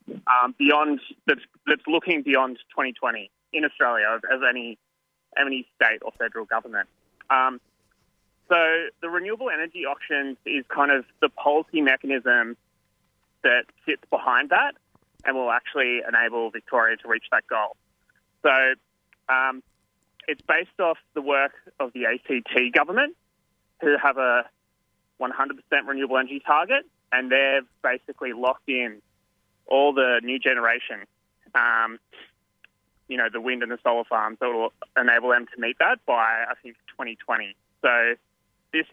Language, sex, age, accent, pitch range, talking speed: English, male, 20-39, Australian, 115-145 Hz, 140 wpm